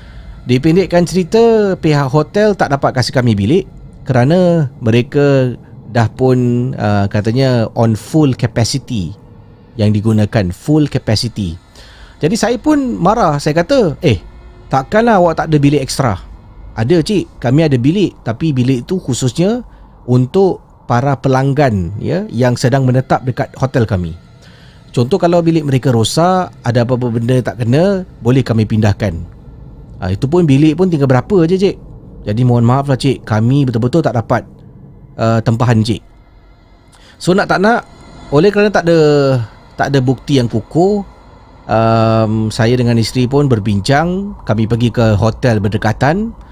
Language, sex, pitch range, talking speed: Malay, male, 115-155 Hz, 145 wpm